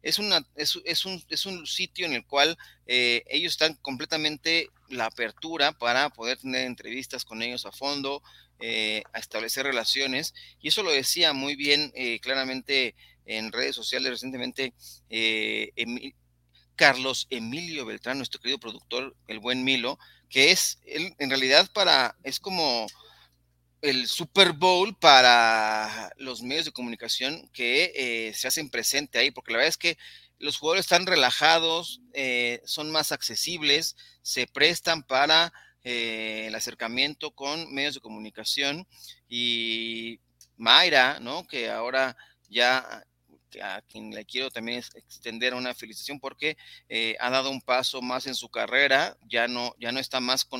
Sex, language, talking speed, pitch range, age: male, Spanish, 150 wpm, 115-155 Hz, 30-49